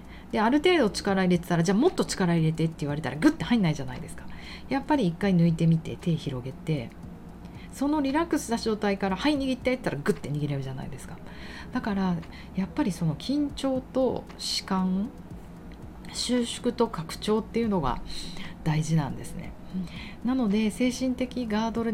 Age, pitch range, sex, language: 40-59, 155-210 Hz, female, Japanese